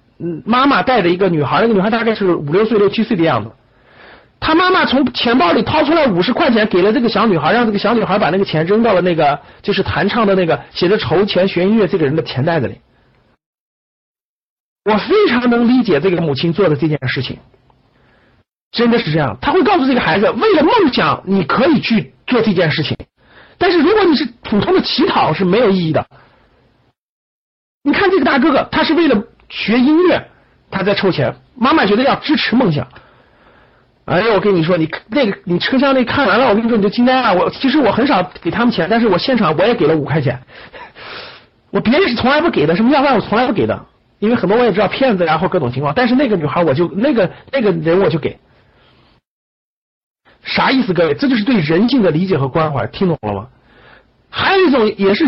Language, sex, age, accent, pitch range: Chinese, male, 50-69, native, 170-250 Hz